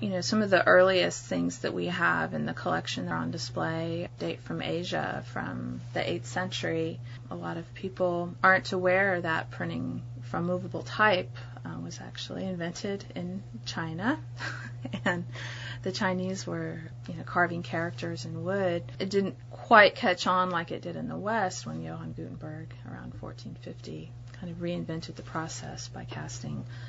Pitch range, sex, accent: 120-170 Hz, female, American